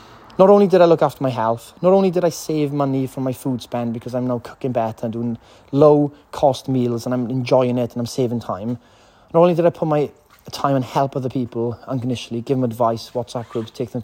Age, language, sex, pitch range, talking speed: 30-49, English, male, 125-160 Hz, 230 wpm